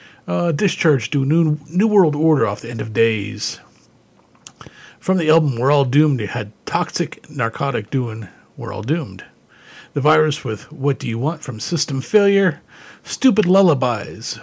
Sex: male